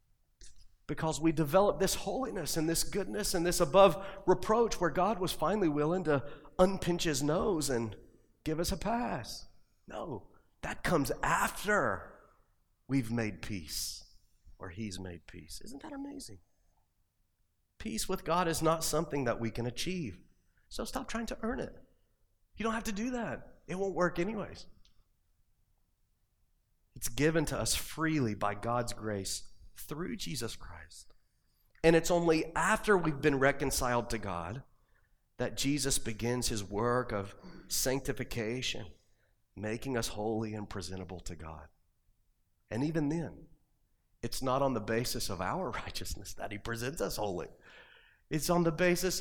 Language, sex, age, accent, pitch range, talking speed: English, male, 30-49, American, 100-170 Hz, 145 wpm